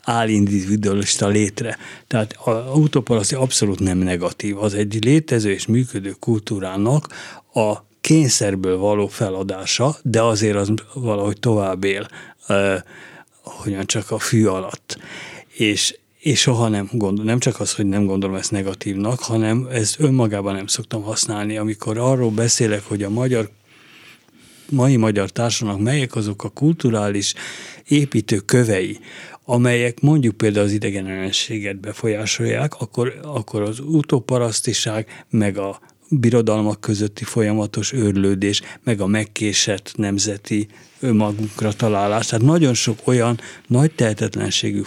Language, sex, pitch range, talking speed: Hungarian, male, 100-120 Hz, 125 wpm